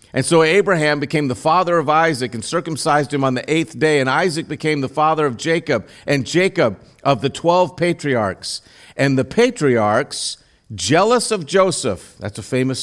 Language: English